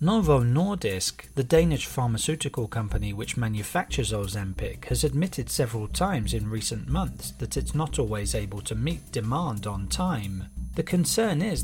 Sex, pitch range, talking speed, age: male, 105-145 Hz, 150 wpm, 30-49